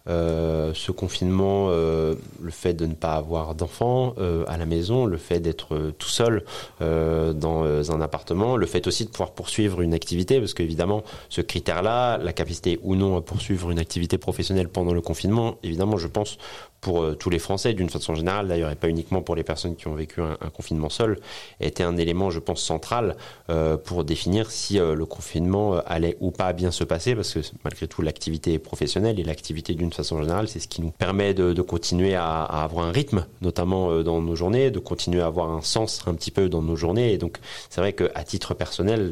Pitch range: 80-100 Hz